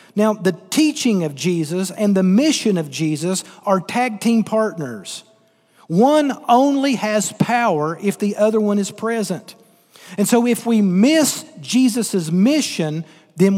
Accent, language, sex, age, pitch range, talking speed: American, English, male, 40-59, 175-230 Hz, 140 wpm